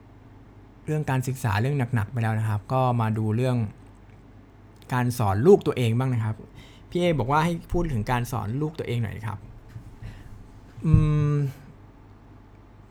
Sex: male